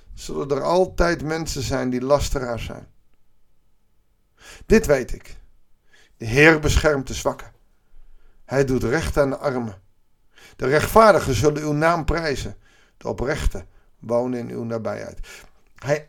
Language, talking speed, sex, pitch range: Dutch, 130 wpm, male, 135-180 Hz